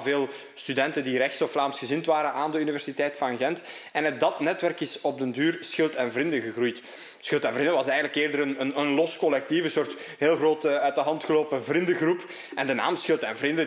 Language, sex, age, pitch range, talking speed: Dutch, male, 20-39, 135-165 Hz, 220 wpm